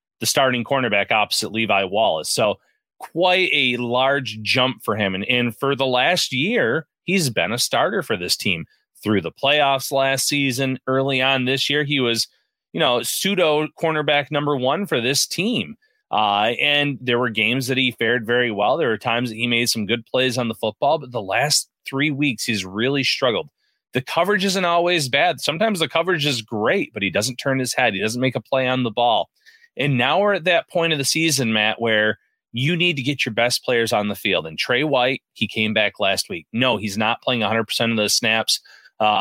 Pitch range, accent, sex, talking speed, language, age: 115-140 Hz, American, male, 210 wpm, English, 30-49